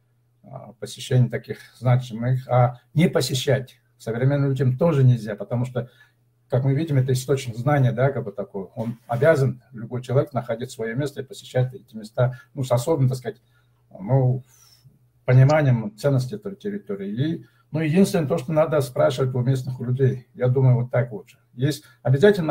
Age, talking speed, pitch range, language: 60-79, 160 wpm, 120-140 Hz, Russian